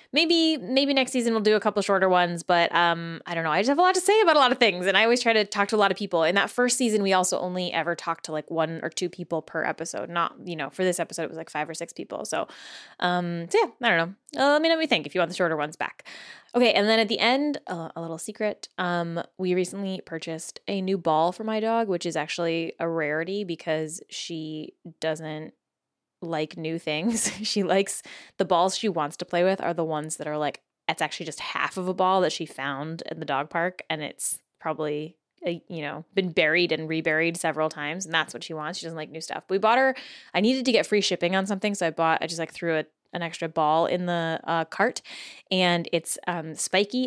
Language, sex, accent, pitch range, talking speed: English, female, American, 160-205 Hz, 250 wpm